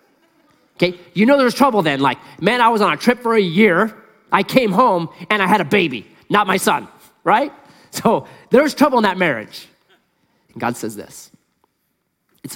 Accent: American